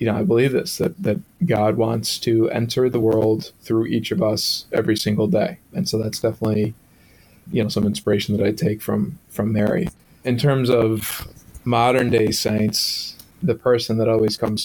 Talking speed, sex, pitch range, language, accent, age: 185 wpm, male, 110-130 Hz, English, American, 20-39